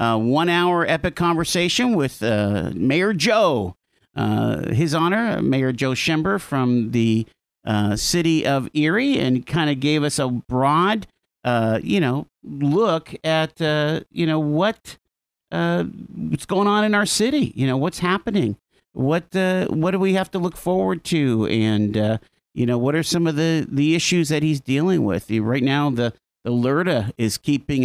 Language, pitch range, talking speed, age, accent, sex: English, 125-175 Hz, 170 wpm, 50-69, American, male